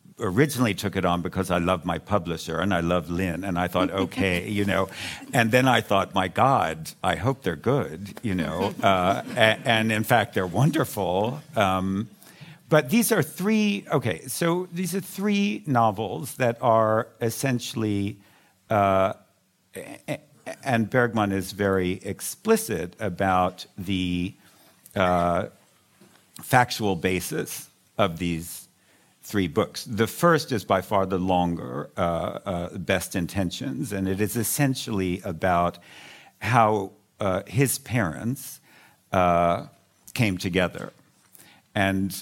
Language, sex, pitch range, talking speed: English, male, 90-120 Hz, 130 wpm